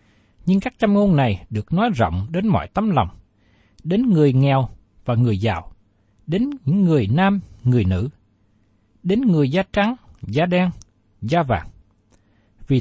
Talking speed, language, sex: 155 wpm, Vietnamese, male